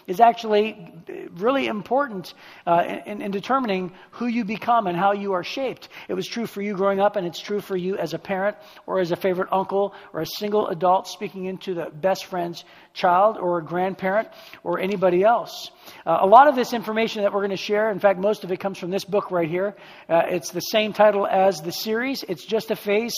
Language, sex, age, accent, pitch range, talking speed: English, male, 50-69, American, 180-220 Hz, 225 wpm